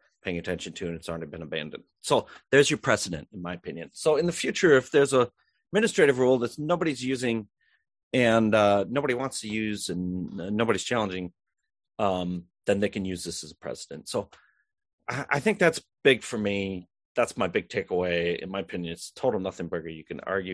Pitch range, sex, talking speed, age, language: 90-120 Hz, male, 200 wpm, 30-49, English